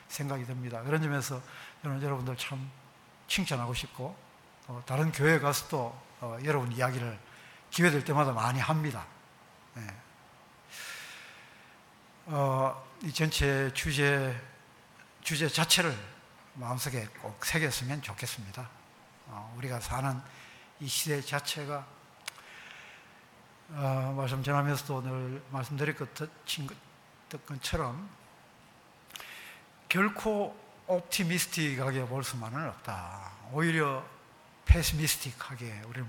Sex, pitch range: male, 130-160 Hz